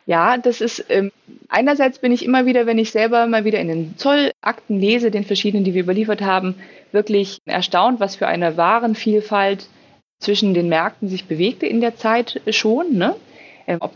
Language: German